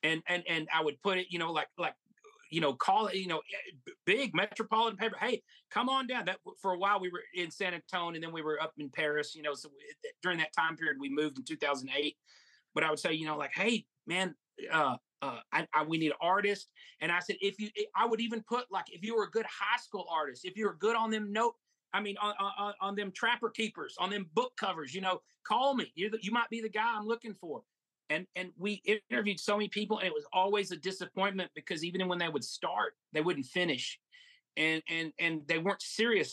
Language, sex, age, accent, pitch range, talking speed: English, male, 30-49, American, 165-225 Hz, 245 wpm